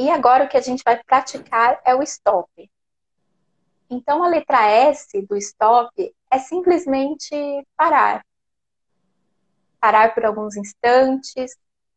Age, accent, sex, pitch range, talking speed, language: 20-39, Brazilian, female, 195-285 Hz, 120 wpm, Portuguese